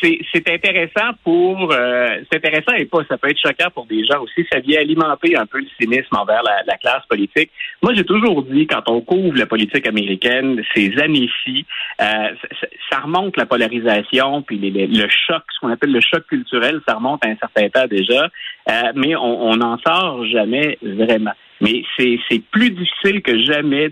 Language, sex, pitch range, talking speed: French, male, 120-185 Hz, 200 wpm